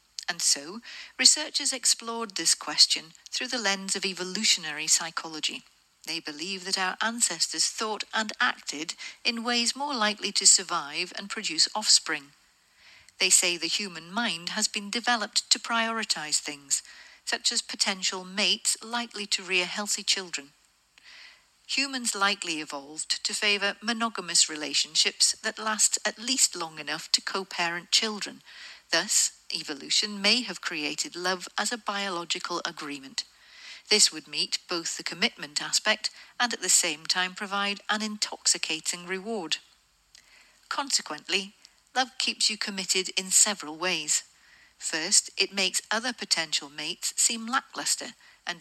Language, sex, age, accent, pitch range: Japanese, female, 50-69, British, 170-225 Hz